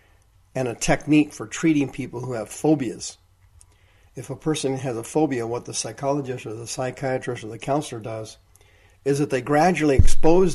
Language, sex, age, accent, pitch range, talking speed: English, male, 50-69, American, 100-140 Hz, 170 wpm